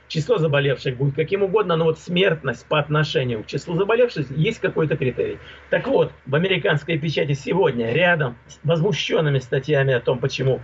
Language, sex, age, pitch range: Russian, male, 50-69, 140-175 Hz